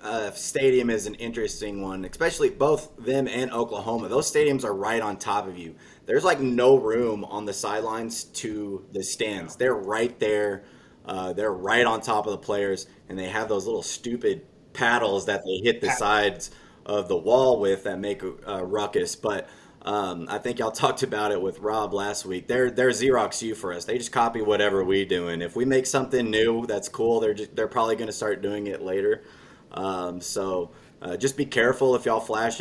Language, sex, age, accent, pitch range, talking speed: English, male, 20-39, American, 105-130 Hz, 205 wpm